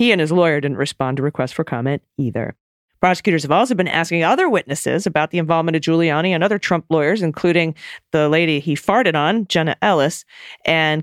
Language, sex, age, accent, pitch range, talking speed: English, female, 40-59, American, 140-185 Hz, 195 wpm